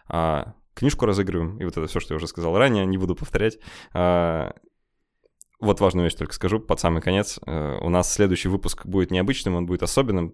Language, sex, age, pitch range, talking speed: Russian, male, 20-39, 90-105 Hz, 180 wpm